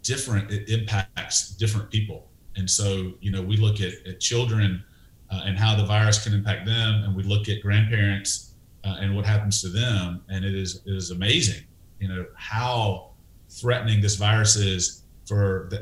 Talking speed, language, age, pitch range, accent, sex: 180 wpm, English, 30-49, 95-115 Hz, American, male